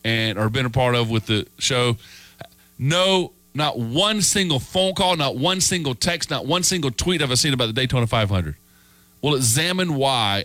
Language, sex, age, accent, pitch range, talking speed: English, male, 40-59, American, 90-130 Hz, 190 wpm